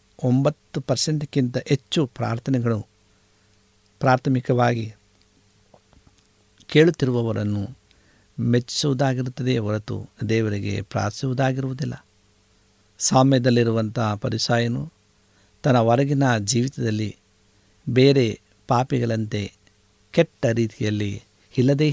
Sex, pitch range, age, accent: male, 105-130 Hz, 60-79, native